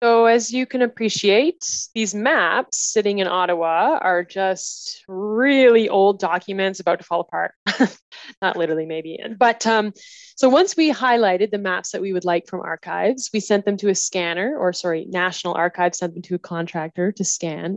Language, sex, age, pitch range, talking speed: English, female, 20-39, 180-215 Hz, 180 wpm